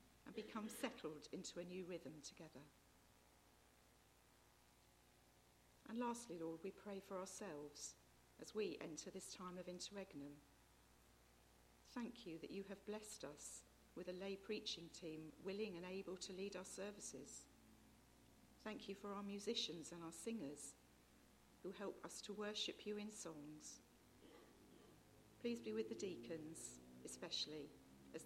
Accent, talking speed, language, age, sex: British, 135 wpm, English, 50-69, female